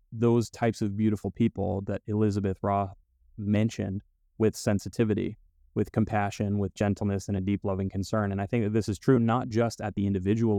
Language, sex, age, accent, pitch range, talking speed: English, male, 30-49, American, 95-115 Hz, 180 wpm